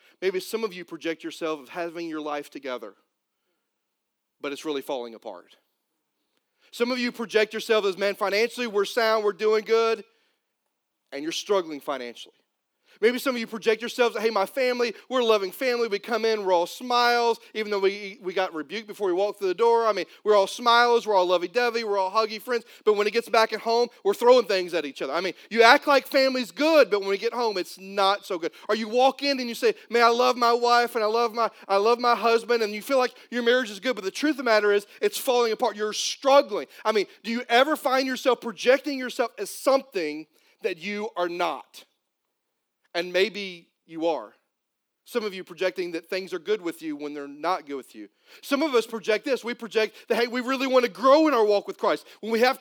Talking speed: 230 wpm